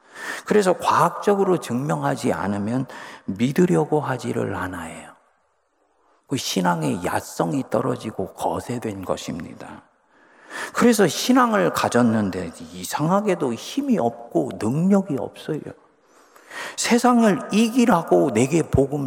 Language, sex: Korean, male